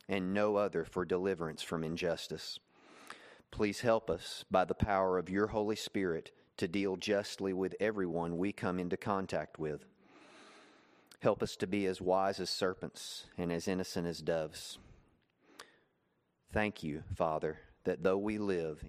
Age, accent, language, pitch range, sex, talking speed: 30-49, American, English, 85-100 Hz, male, 150 wpm